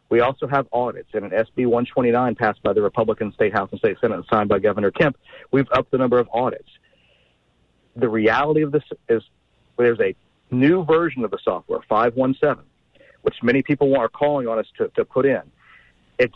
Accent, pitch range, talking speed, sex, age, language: American, 115-155 Hz, 195 wpm, male, 50-69, English